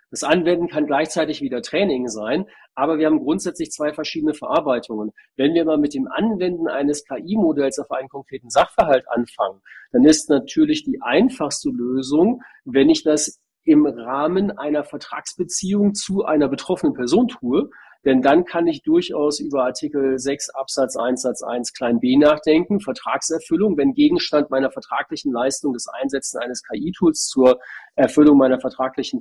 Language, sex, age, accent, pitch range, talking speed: German, male, 40-59, German, 125-175 Hz, 150 wpm